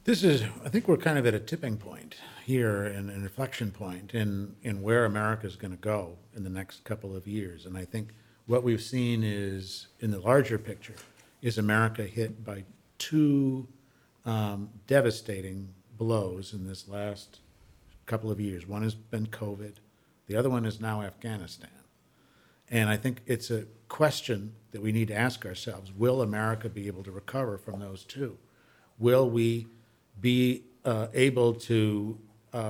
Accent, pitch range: American, 105-120 Hz